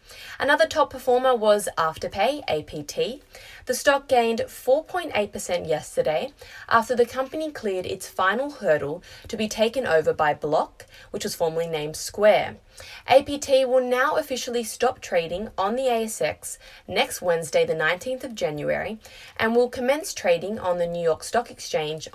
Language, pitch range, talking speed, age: English, 165-260 Hz, 145 wpm, 20-39